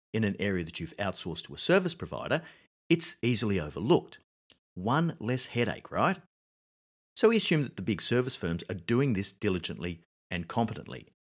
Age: 50-69